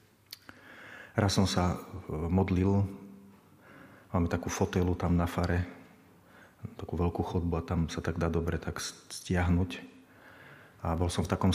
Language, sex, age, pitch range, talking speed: Slovak, male, 40-59, 90-100 Hz, 140 wpm